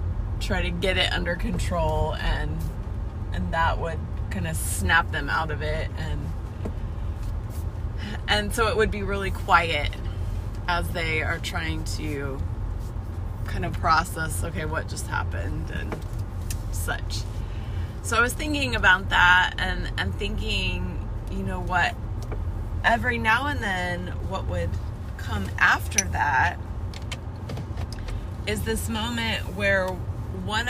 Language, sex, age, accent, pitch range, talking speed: English, female, 20-39, American, 90-100 Hz, 125 wpm